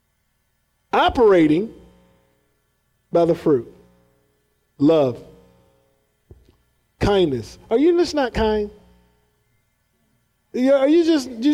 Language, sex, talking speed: English, male, 70 wpm